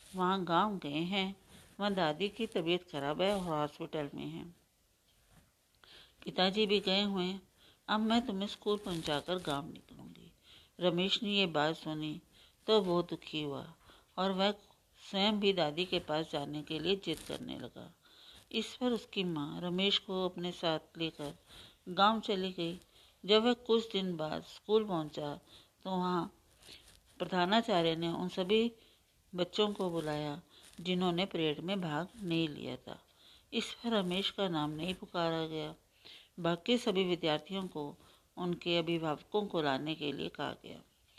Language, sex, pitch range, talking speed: Hindi, female, 165-200 Hz, 150 wpm